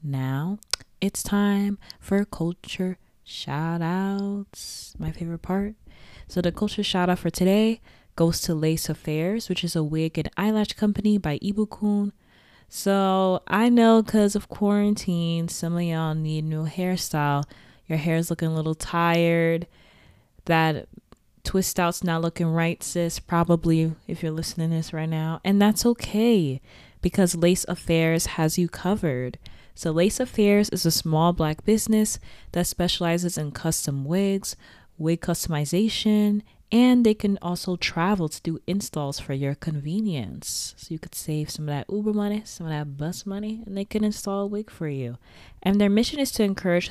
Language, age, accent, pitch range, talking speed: English, 20-39, American, 160-205 Hz, 160 wpm